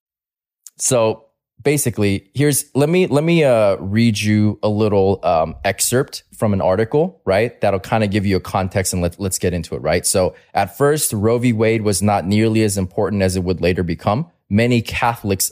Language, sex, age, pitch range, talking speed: English, male, 20-39, 100-120 Hz, 195 wpm